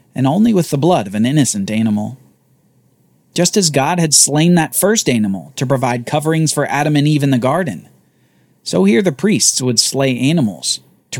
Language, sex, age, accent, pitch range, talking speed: English, male, 40-59, American, 105-165 Hz, 190 wpm